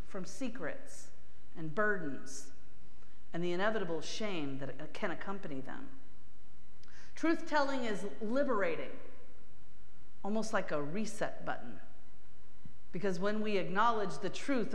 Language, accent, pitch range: English, American, 155-205 Hz